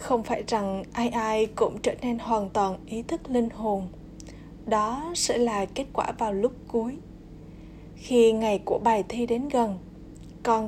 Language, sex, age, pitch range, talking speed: Vietnamese, female, 20-39, 205-245 Hz, 170 wpm